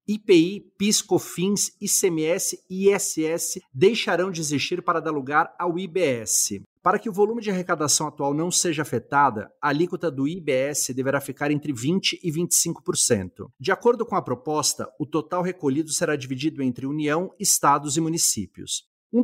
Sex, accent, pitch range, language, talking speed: male, Brazilian, 145-180 Hz, English, 155 wpm